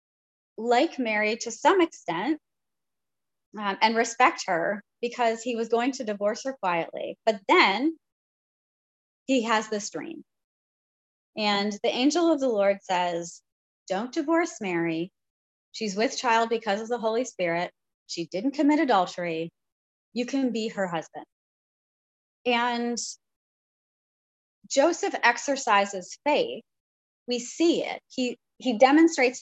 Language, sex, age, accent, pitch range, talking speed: English, female, 30-49, American, 195-250 Hz, 120 wpm